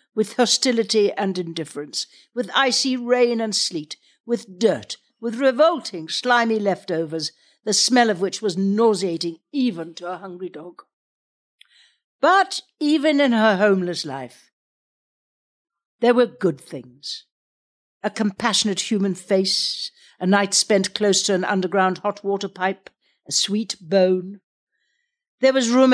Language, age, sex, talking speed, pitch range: English, 60-79, female, 130 wpm, 180-225 Hz